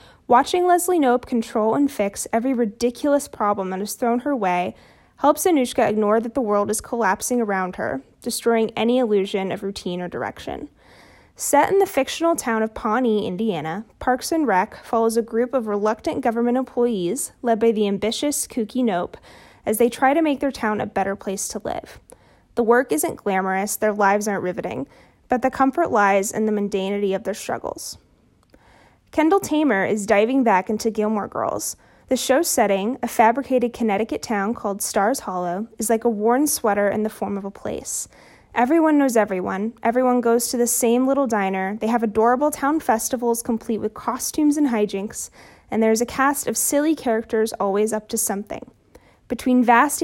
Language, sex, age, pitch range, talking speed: English, female, 10-29, 210-265 Hz, 175 wpm